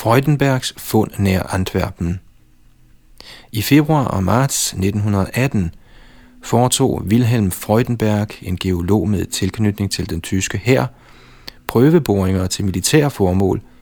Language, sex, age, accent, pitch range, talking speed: Danish, male, 40-59, native, 95-115 Hz, 100 wpm